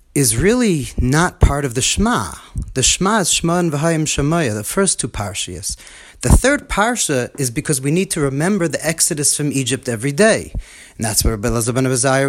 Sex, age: male, 30-49